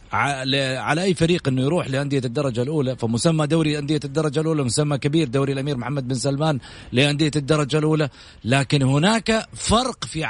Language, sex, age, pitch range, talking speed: English, male, 40-59, 130-165 Hz, 155 wpm